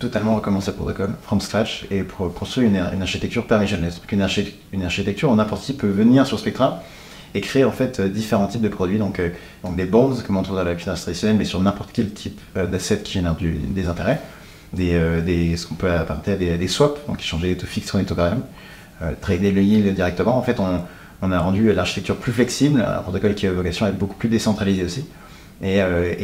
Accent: French